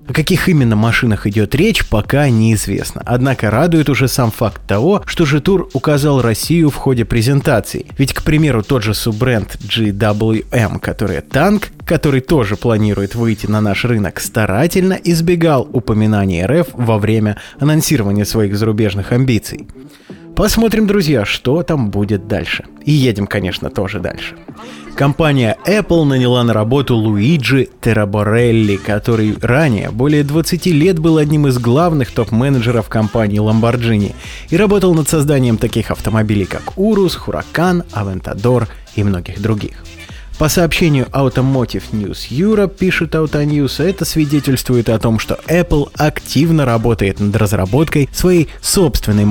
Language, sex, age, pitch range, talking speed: Russian, male, 20-39, 105-150 Hz, 135 wpm